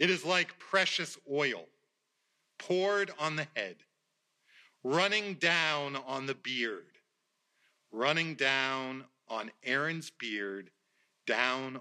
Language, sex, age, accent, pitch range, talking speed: English, male, 40-59, American, 130-170 Hz, 100 wpm